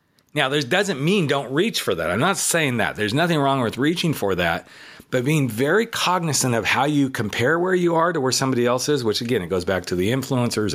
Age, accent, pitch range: 40-59, American, 105-145 Hz